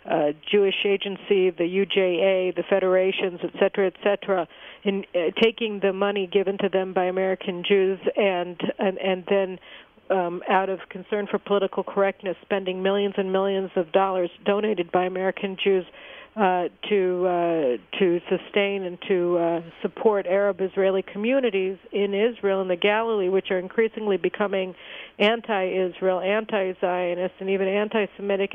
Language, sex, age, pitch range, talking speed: English, female, 60-79, 185-205 Hz, 145 wpm